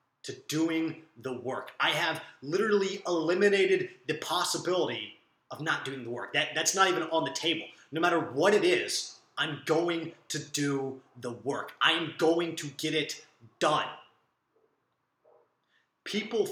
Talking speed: 145 wpm